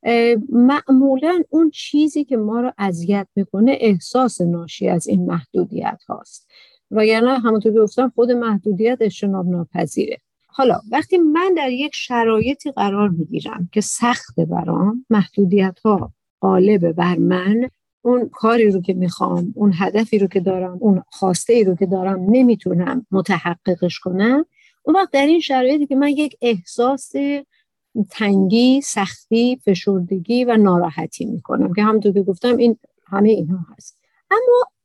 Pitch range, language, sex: 200-265 Hz, Persian, female